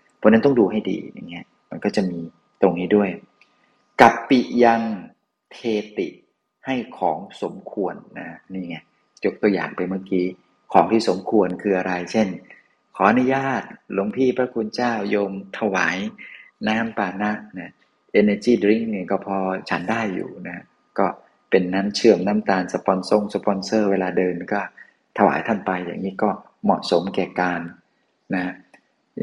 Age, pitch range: 30-49, 95-110 Hz